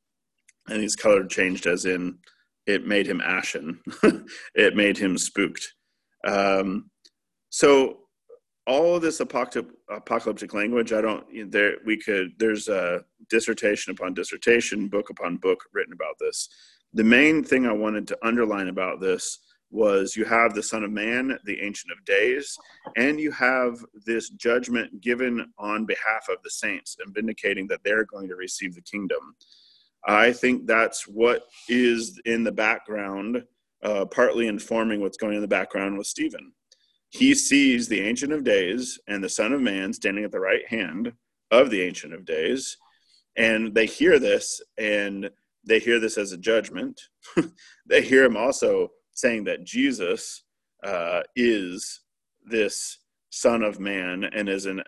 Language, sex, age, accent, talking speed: English, male, 40-59, American, 155 wpm